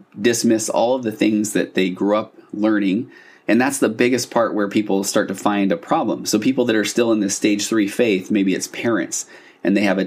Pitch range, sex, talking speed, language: 95-115 Hz, male, 230 wpm, English